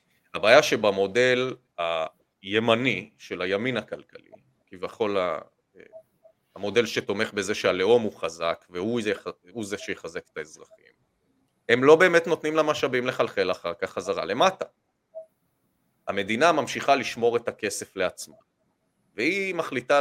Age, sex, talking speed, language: 30-49, male, 115 wpm, English